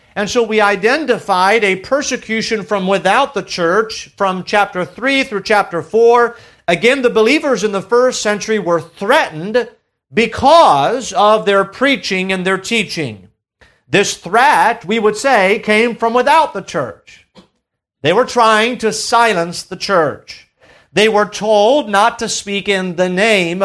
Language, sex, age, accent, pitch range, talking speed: English, male, 40-59, American, 195-240 Hz, 145 wpm